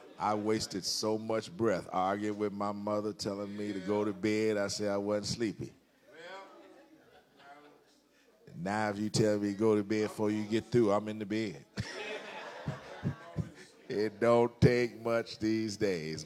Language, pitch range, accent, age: English, 105-145 Hz, American, 50-69